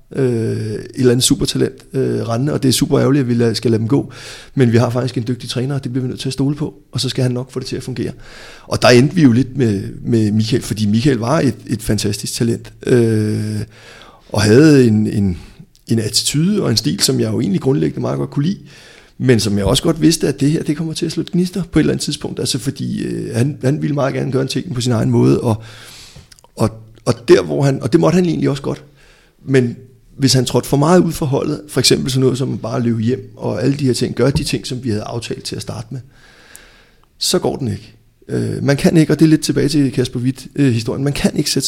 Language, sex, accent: Danish, male, native